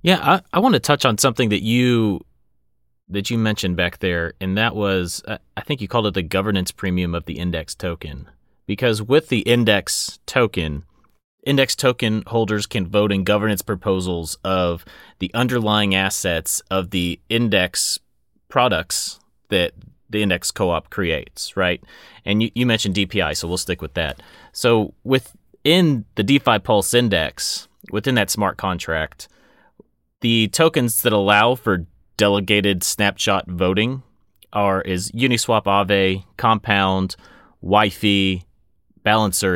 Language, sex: English, male